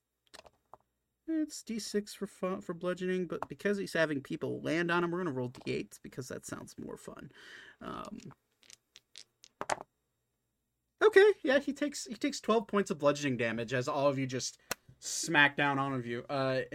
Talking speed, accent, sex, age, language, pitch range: 160 wpm, American, male, 30-49, English, 120-180 Hz